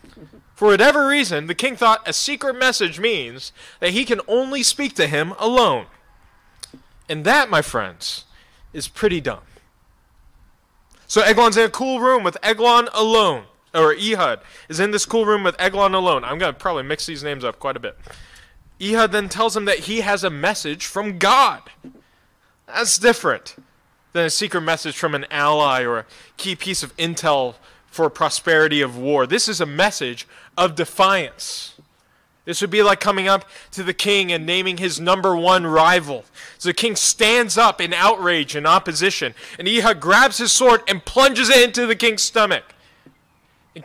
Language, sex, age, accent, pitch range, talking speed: English, male, 20-39, American, 165-230 Hz, 175 wpm